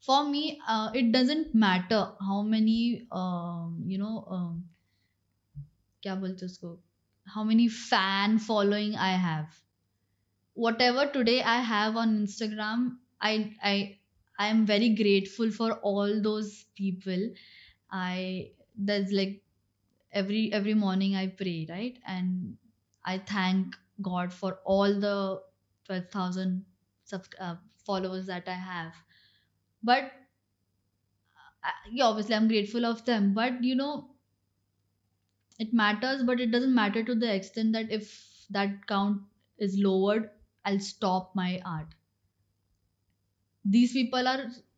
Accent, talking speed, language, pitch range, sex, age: Indian, 120 wpm, English, 185-225 Hz, female, 20-39